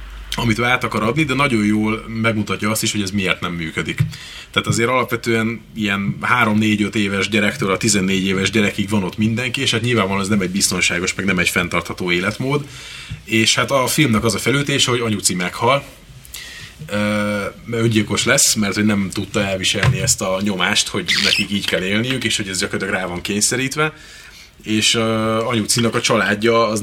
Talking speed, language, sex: 175 wpm, Hungarian, male